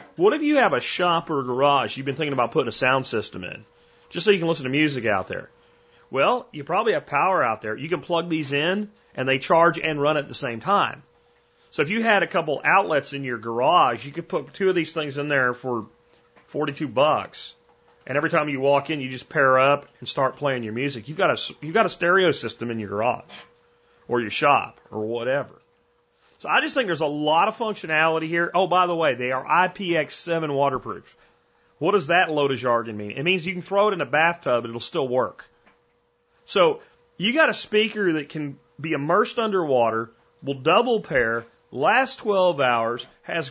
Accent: American